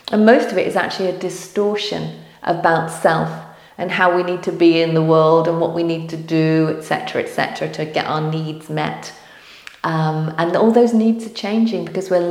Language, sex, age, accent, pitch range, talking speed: English, female, 40-59, British, 155-205 Hz, 200 wpm